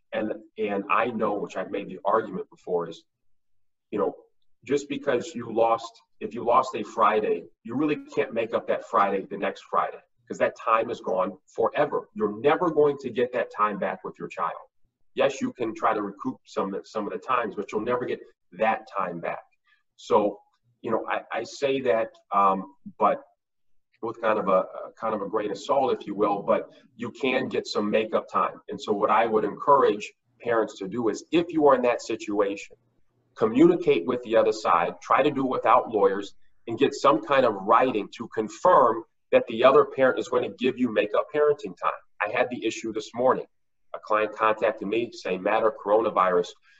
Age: 40-59